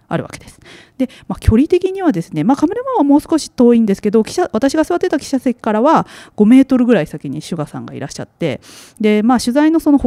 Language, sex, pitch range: Japanese, female, 165-265 Hz